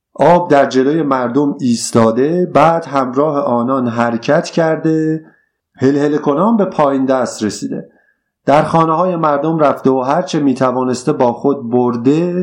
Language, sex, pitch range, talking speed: Persian, male, 130-170 Hz, 130 wpm